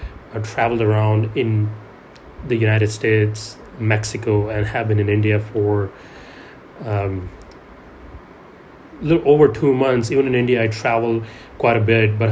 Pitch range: 110-125 Hz